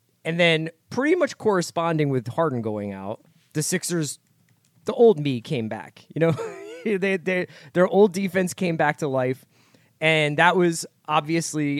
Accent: American